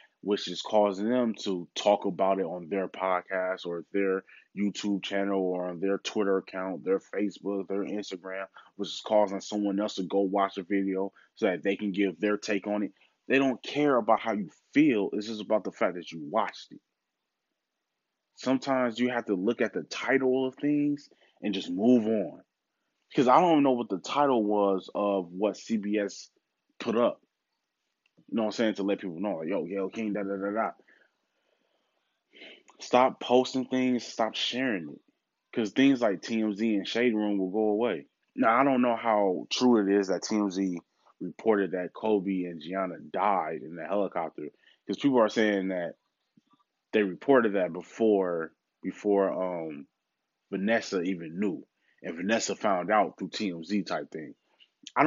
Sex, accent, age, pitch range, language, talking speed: male, American, 20-39, 95-115 Hz, English, 175 wpm